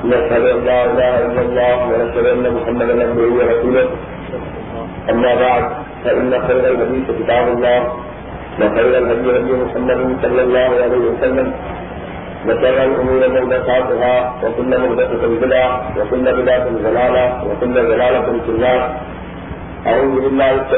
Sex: male